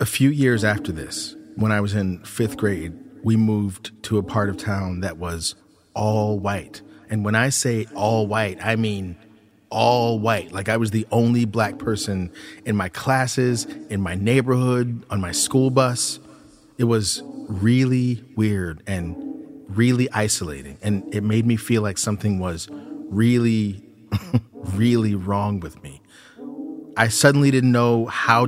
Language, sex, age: English, male, 30-49